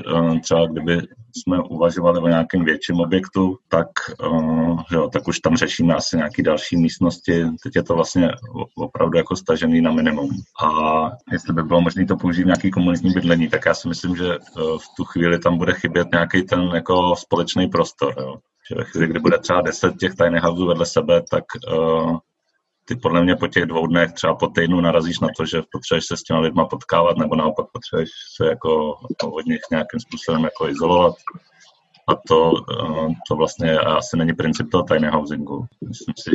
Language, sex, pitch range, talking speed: Czech, male, 80-90 Hz, 190 wpm